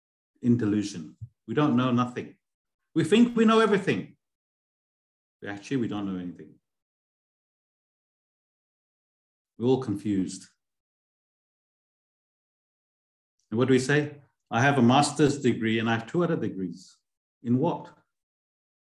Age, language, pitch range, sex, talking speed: 50-69, English, 95-135 Hz, male, 120 wpm